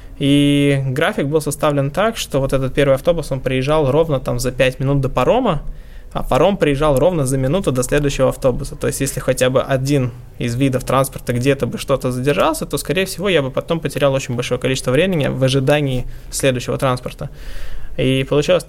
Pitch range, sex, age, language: 125-145 Hz, male, 20-39, Russian